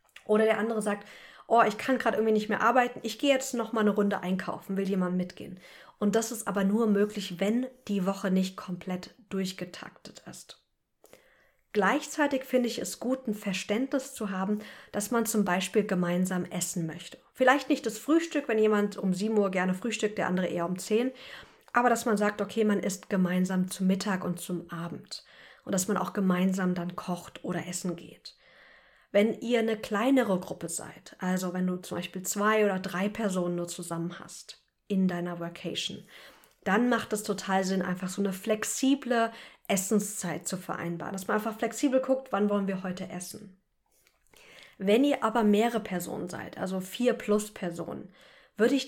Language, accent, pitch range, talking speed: German, German, 185-225 Hz, 180 wpm